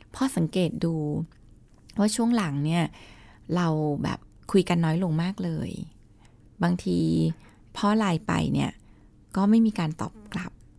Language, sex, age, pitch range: Thai, female, 20-39, 155-205 Hz